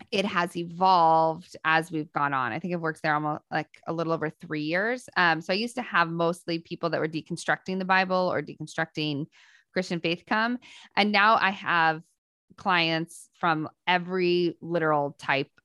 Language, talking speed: English, 175 wpm